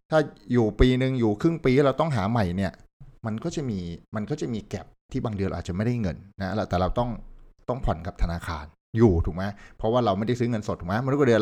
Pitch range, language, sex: 90-120 Hz, Thai, male